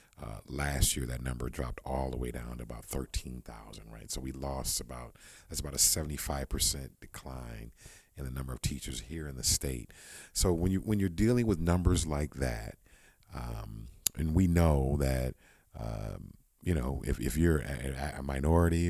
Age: 40-59